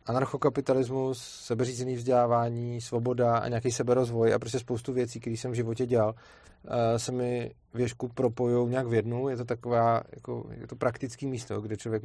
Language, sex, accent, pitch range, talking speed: Czech, male, native, 110-125 Hz, 155 wpm